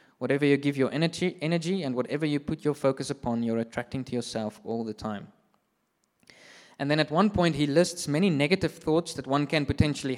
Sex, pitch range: male, 130-160 Hz